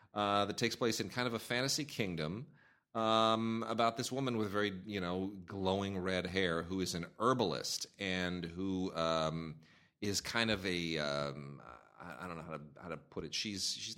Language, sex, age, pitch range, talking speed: English, male, 30-49, 80-100 Hz, 190 wpm